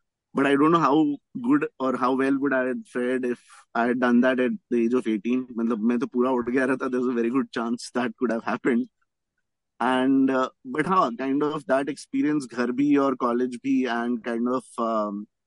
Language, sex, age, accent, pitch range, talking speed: Hindi, male, 20-39, native, 120-140 Hz, 225 wpm